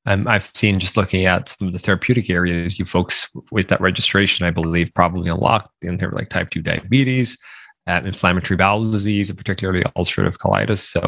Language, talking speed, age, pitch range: English, 205 wpm, 20-39, 90-115 Hz